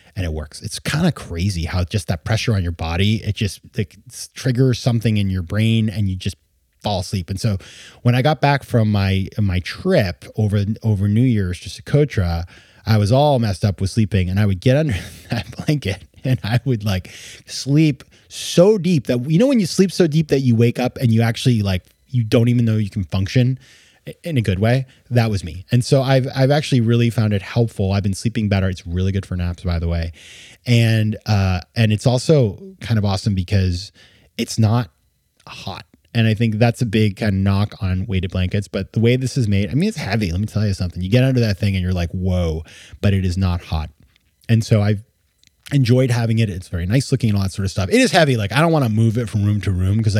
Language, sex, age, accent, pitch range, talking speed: English, male, 20-39, American, 95-125 Hz, 240 wpm